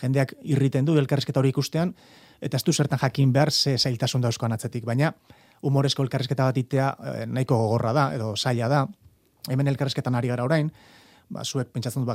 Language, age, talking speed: Spanish, 30-49, 165 wpm